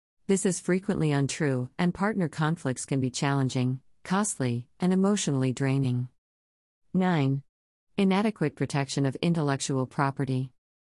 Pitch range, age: 130-165 Hz, 50-69